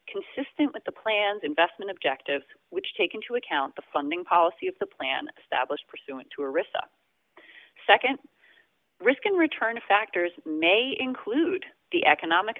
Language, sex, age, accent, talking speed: English, female, 30-49, American, 140 wpm